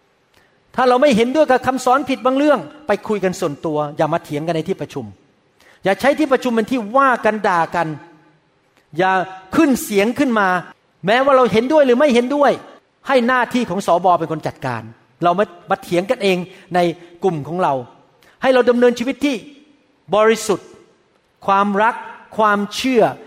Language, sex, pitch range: Thai, male, 175-230 Hz